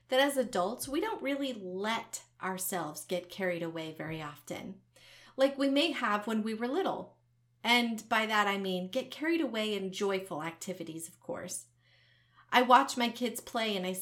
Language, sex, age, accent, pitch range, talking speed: English, female, 30-49, American, 185-245 Hz, 175 wpm